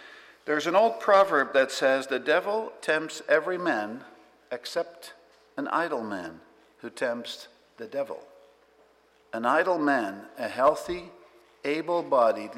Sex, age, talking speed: male, 60-79, 120 wpm